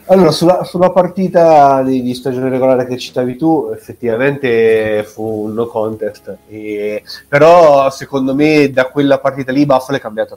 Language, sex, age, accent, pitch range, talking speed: Italian, male, 30-49, native, 105-135 Hz, 150 wpm